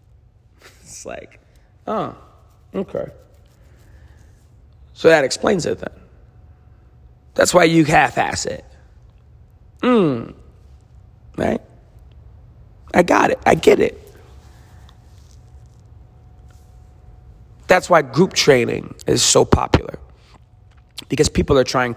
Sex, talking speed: male, 90 wpm